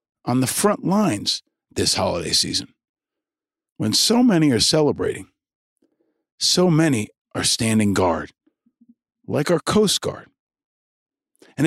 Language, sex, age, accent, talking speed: English, male, 50-69, American, 115 wpm